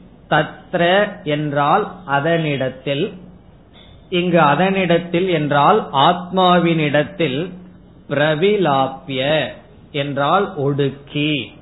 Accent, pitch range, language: native, 145-180 Hz, Tamil